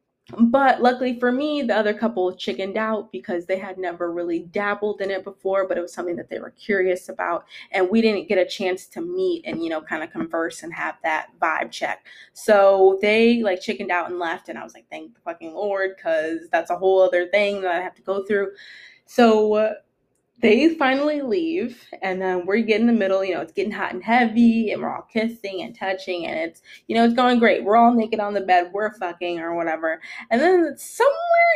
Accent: American